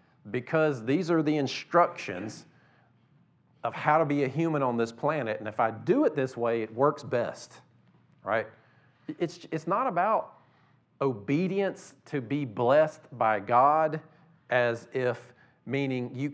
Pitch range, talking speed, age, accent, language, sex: 125-155 Hz, 145 wpm, 40-59, American, English, male